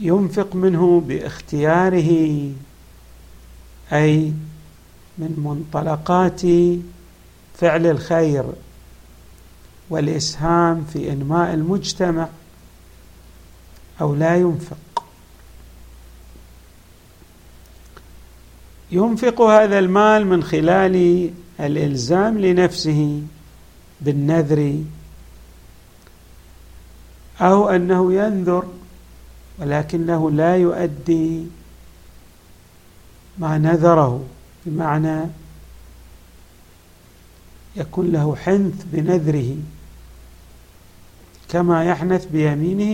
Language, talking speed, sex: Arabic, 55 wpm, male